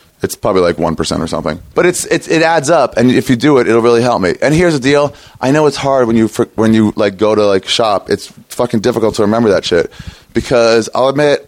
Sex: male